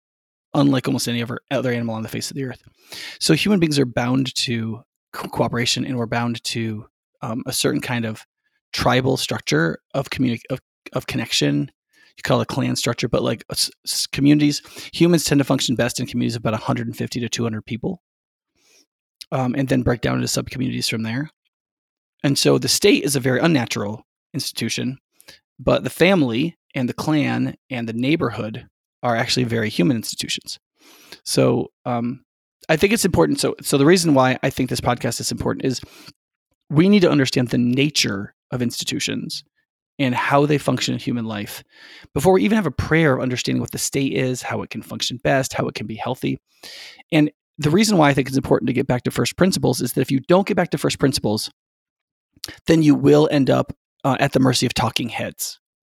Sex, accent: male, American